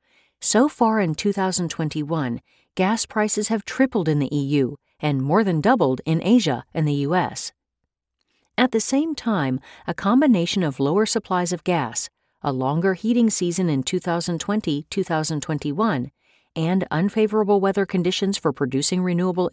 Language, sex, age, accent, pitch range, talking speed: English, female, 50-69, American, 150-220 Hz, 135 wpm